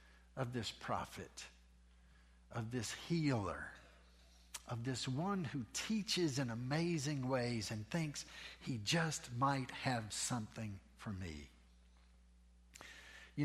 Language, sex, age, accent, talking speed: English, male, 60-79, American, 105 wpm